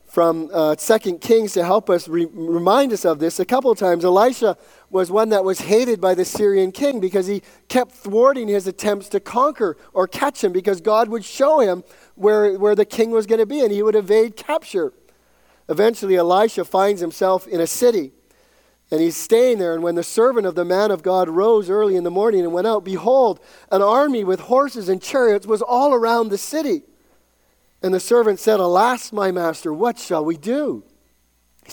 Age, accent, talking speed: 40-59, American, 200 wpm